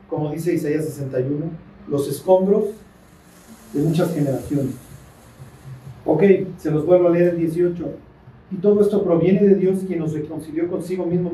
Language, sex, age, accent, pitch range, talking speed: Spanish, male, 40-59, Mexican, 155-190 Hz, 150 wpm